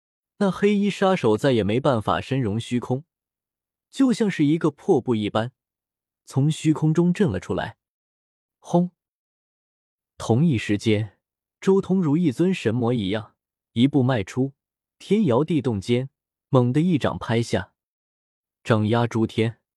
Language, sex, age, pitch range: Chinese, male, 20-39, 110-165 Hz